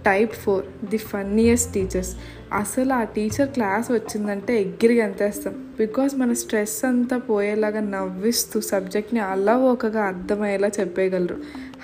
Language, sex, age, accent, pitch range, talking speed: Telugu, female, 20-39, native, 195-230 Hz, 200 wpm